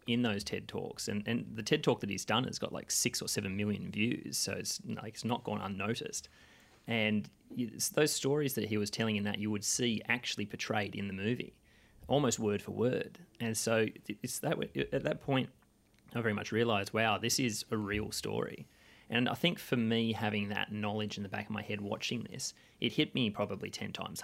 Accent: Australian